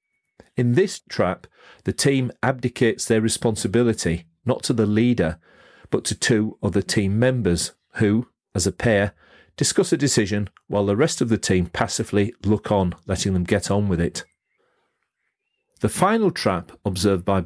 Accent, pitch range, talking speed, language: British, 95-120 Hz, 155 wpm, English